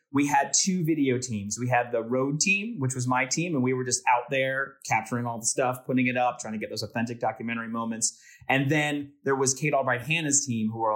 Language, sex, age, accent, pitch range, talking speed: English, male, 30-49, American, 115-135 Hz, 235 wpm